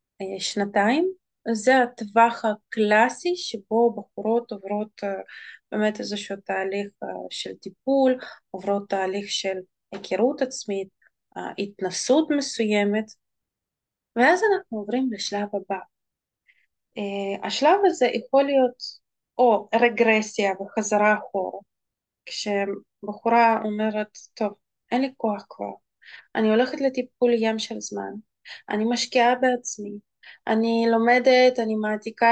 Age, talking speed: 20-39, 95 wpm